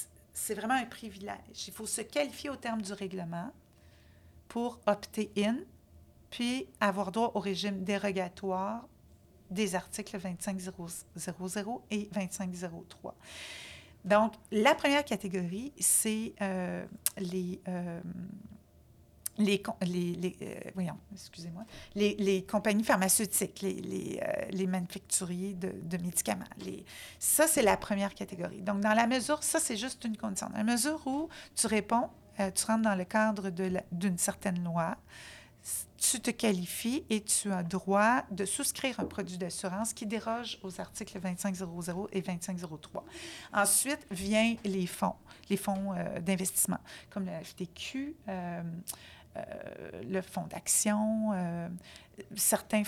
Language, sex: French, female